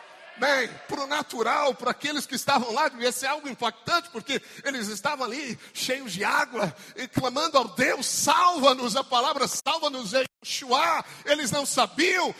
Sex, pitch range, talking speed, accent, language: male, 255-320 Hz, 155 wpm, Brazilian, Portuguese